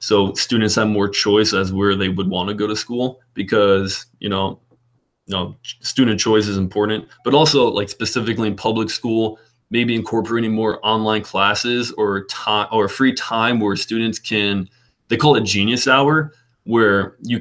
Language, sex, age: English, male, 20-39